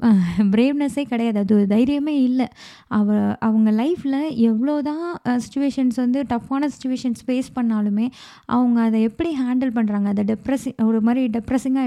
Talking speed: 130 wpm